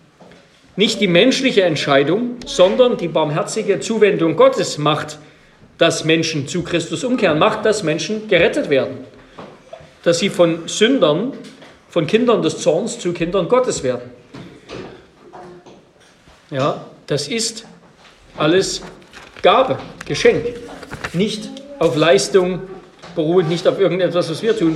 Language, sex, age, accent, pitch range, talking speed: German, male, 40-59, German, 160-225 Hz, 115 wpm